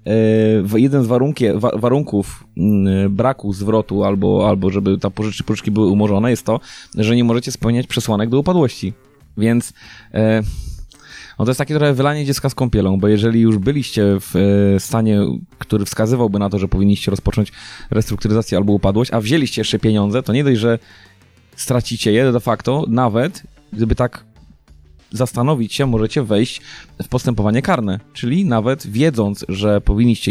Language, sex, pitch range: Polish, male, 105-125 Hz